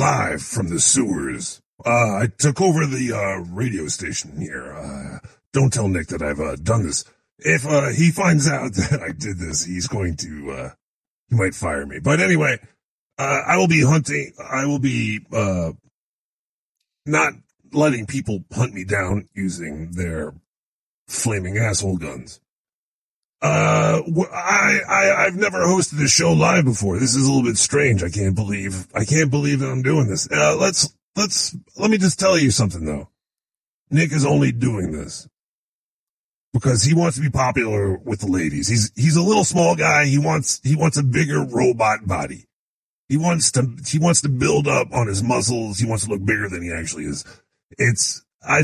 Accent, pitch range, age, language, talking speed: American, 95-150 Hz, 40-59, English, 180 wpm